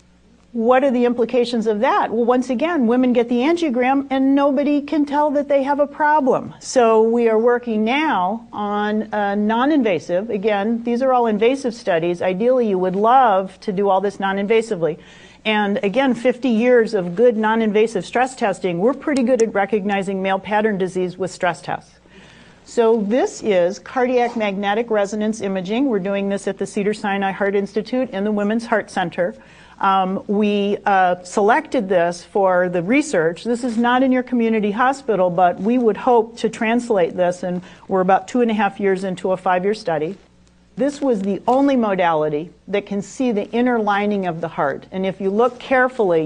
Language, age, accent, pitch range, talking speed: English, 40-59, American, 185-240 Hz, 180 wpm